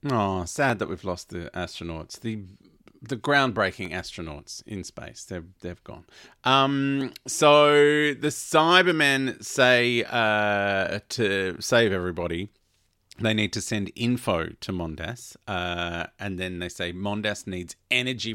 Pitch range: 95-125 Hz